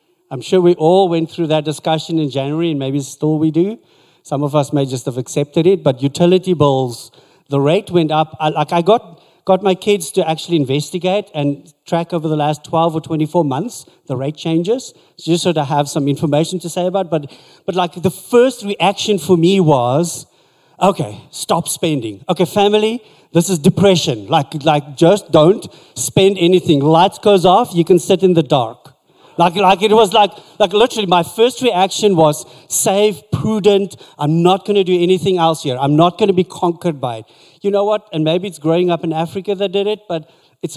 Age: 50-69